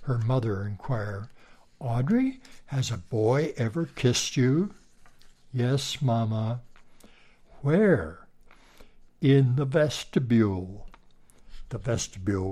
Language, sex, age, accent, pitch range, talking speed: English, male, 60-79, American, 105-130 Hz, 85 wpm